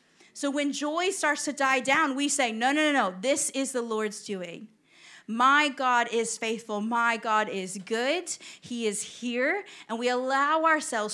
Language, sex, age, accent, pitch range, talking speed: English, female, 30-49, American, 200-260 Hz, 180 wpm